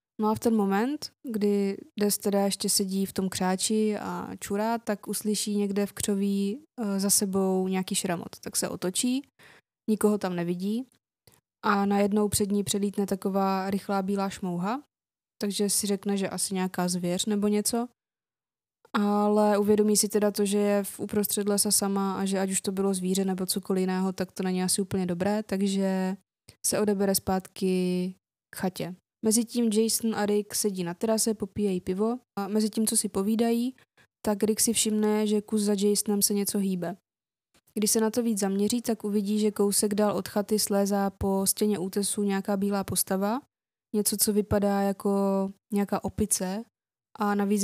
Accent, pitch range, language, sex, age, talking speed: native, 195-210 Hz, Czech, female, 20-39, 170 wpm